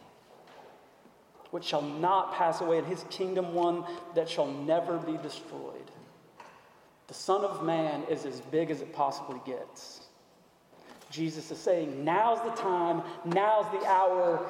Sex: male